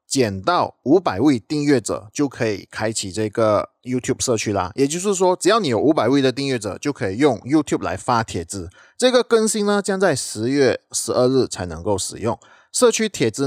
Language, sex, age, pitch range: Chinese, male, 20-39, 100-140 Hz